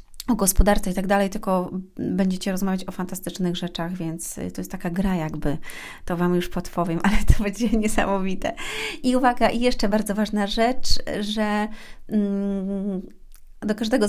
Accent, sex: native, female